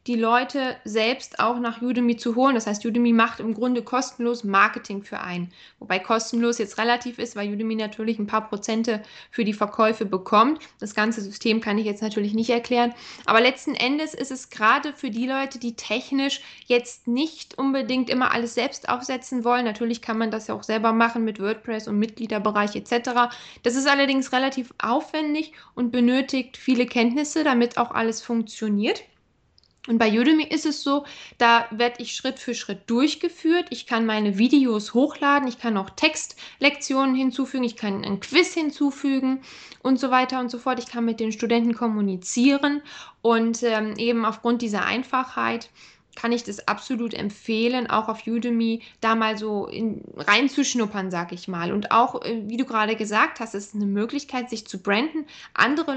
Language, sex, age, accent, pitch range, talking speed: German, female, 10-29, German, 220-260 Hz, 175 wpm